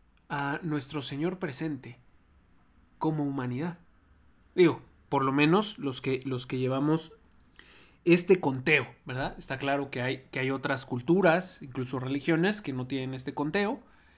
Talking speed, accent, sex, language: 140 wpm, Mexican, male, Spanish